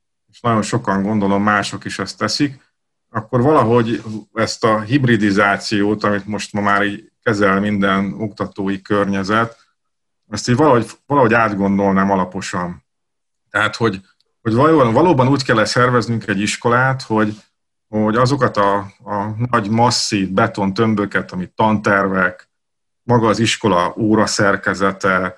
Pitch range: 100-120 Hz